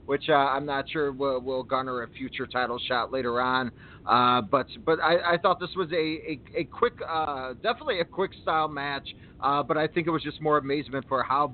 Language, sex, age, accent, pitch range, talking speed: English, male, 30-49, American, 125-160 Hz, 225 wpm